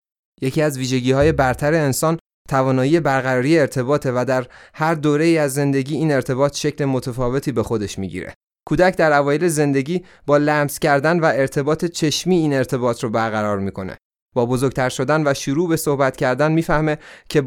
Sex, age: male, 30-49